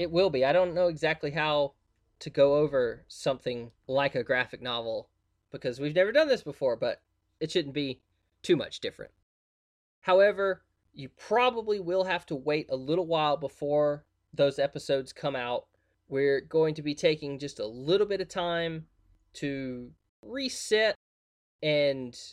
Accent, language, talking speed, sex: American, English, 155 wpm, male